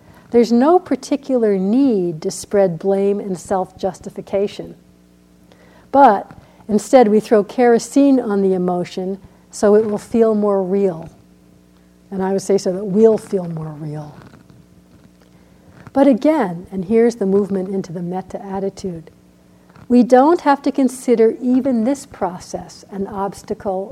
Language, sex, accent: English, female, American